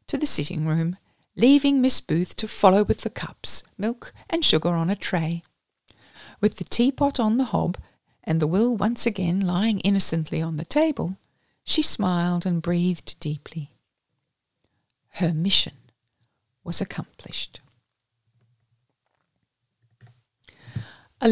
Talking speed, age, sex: 125 wpm, 60-79, female